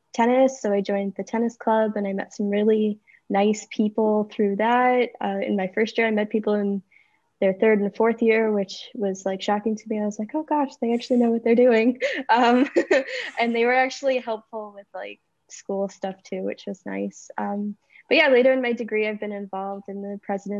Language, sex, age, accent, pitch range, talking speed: English, female, 10-29, American, 195-230 Hz, 215 wpm